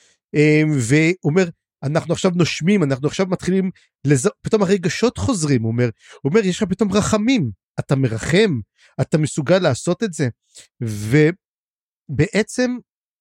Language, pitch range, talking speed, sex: Hebrew, 145-195 Hz, 125 wpm, male